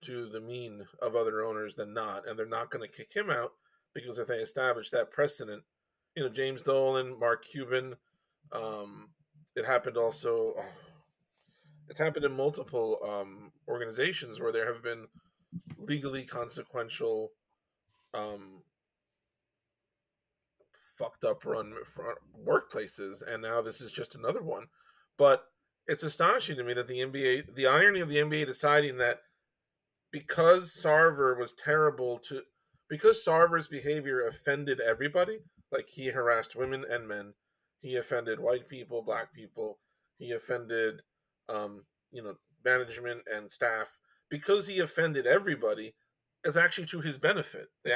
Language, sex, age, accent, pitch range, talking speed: English, male, 20-39, American, 120-170 Hz, 140 wpm